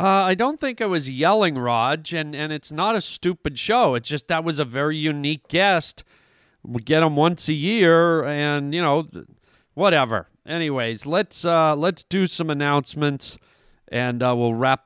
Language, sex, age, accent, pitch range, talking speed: English, male, 40-59, American, 135-175 Hz, 180 wpm